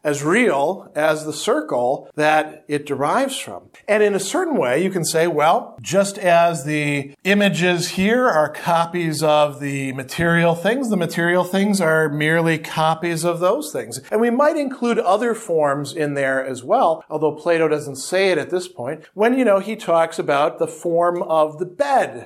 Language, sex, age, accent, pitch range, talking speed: English, male, 40-59, American, 155-200 Hz, 180 wpm